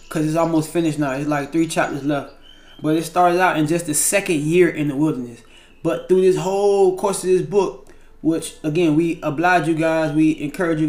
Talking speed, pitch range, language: 215 wpm, 150-175 Hz, English